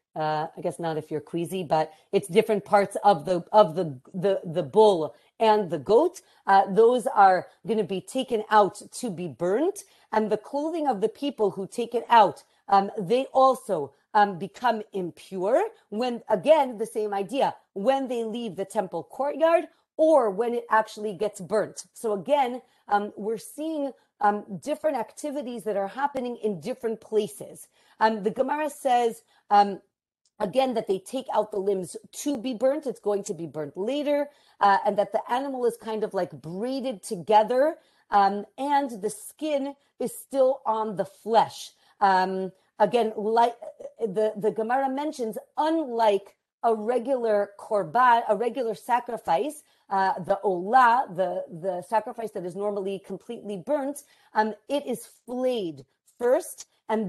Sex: female